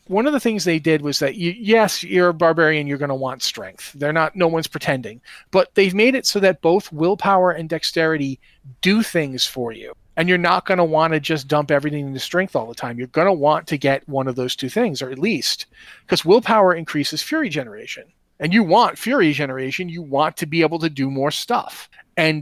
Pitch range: 140-180 Hz